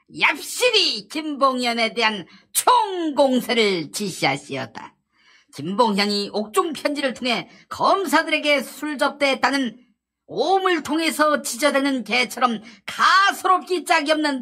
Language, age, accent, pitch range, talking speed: English, 40-59, Korean, 220-320 Hz, 75 wpm